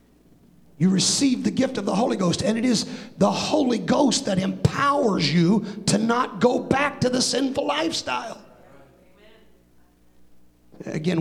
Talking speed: 140 wpm